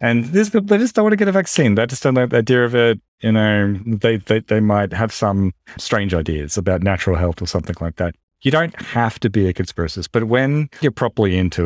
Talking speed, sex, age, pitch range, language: 240 wpm, male, 30-49, 90-115 Hz, English